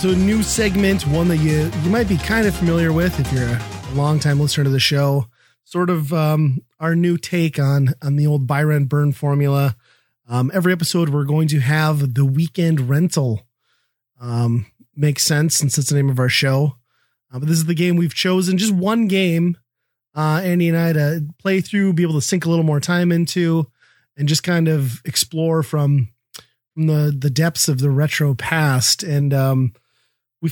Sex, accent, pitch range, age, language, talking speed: male, American, 135-170 Hz, 30-49, English, 195 wpm